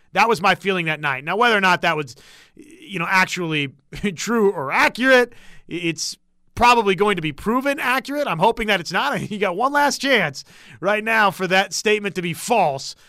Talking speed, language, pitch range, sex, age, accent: 195 wpm, English, 155-205 Hz, male, 30-49, American